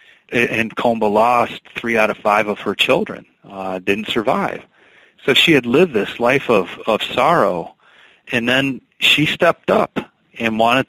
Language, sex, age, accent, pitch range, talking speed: English, male, 40-59, American, 110-125 Hz, 160 wpm